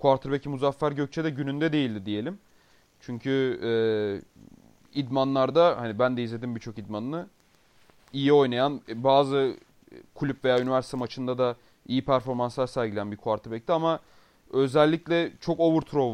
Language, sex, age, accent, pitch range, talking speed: Turkish, male, 30-49, native, 115-145 Hz, 125 wpm